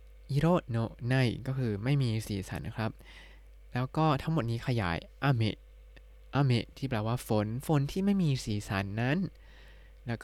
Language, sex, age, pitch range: Thai, male, 20-39, 115-145 Hz